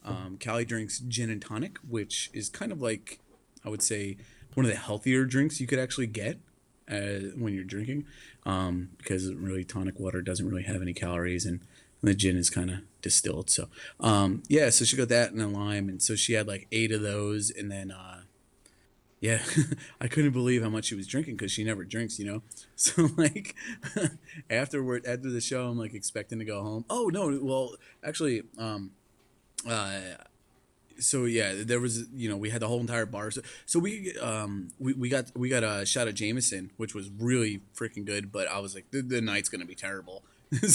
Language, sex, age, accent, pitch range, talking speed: English, male, 30-49, American, 100-125 Hz, 205 wpm